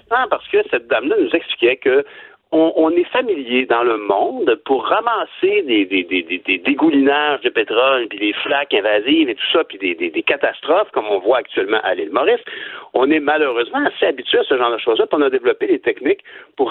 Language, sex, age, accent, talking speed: French, male, 60-79, French, 225 wpm